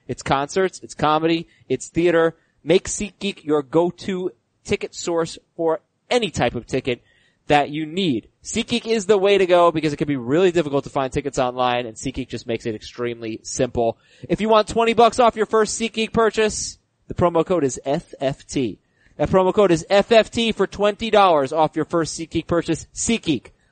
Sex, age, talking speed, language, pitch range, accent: male, 30-49, 180 wpm, English, 130-185 Hz, American